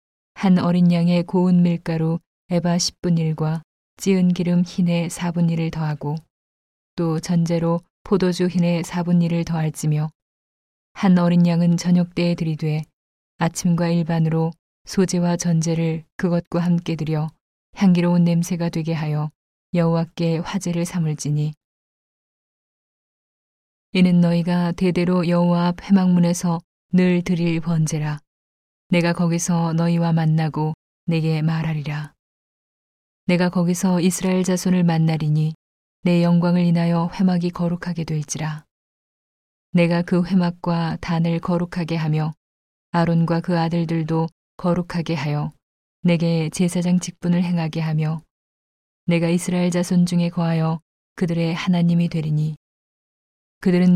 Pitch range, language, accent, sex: 160-175 Hz, Korean, native, female